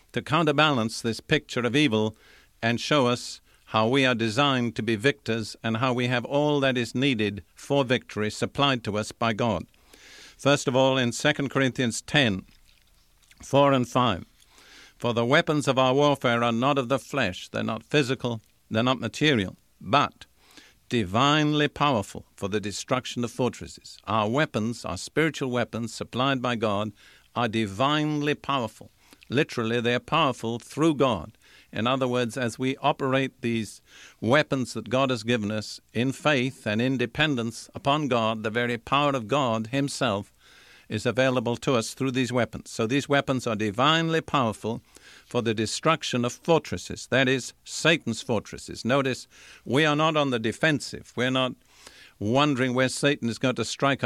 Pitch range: 115-140 Hz